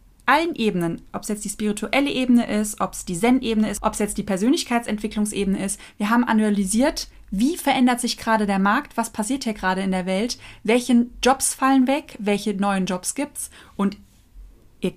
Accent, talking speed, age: German, 190 wpm, 20-39